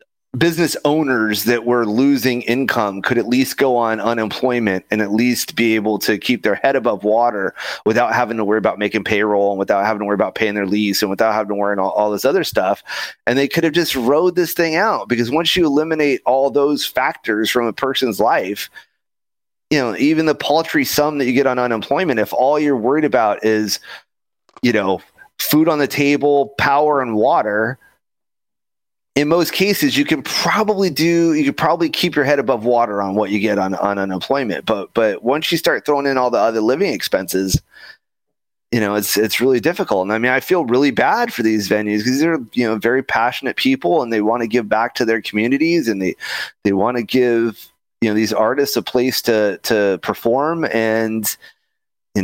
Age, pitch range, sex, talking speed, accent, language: 30-49, 105-145 Hz, male, 205 wpm, American, English